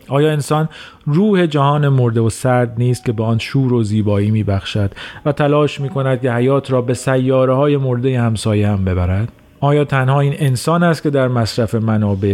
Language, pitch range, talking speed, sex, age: Persian, 110-135 Hz, 185 wpm, male, 40-59